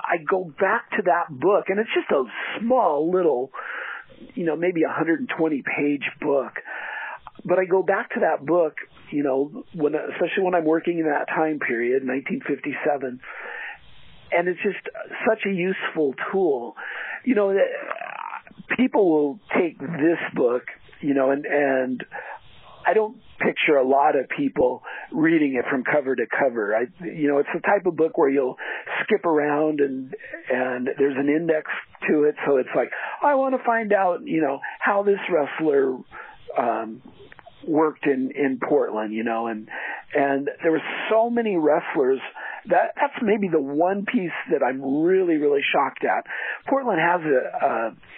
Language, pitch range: English, 145-235 Hz